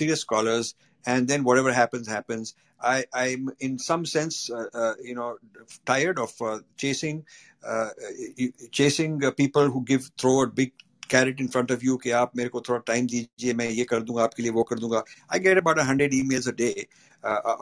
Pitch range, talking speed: 125-155 Hz, 205 wpm